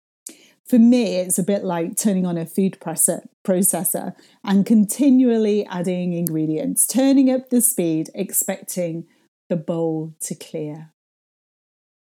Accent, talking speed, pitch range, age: British, 120 wpm, 165-220 Hz, 40-59